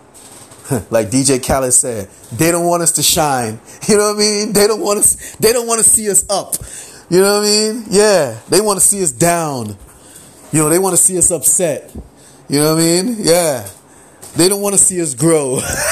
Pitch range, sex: 135-200 Hz, male